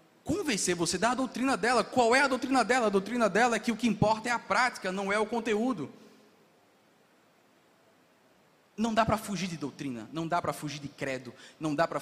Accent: Brazilian